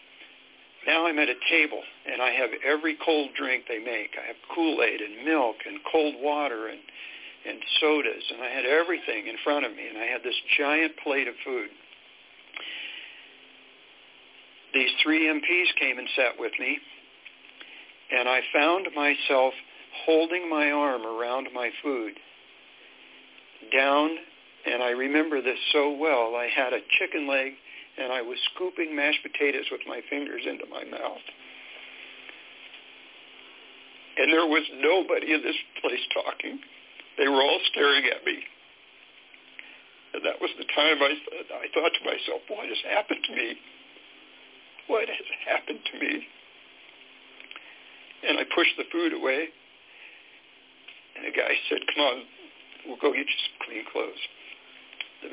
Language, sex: English, male